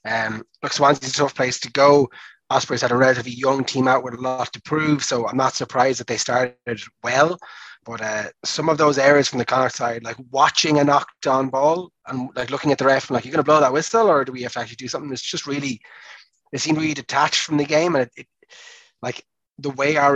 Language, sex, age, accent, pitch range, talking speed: English, male, 20-39, Irish, 130-155 Hz, 235 wpm